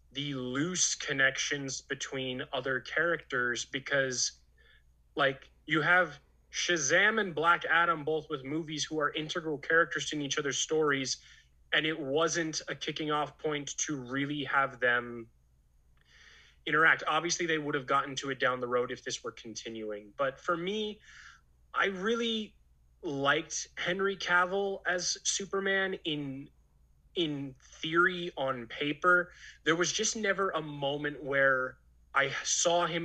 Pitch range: 130-165 Hz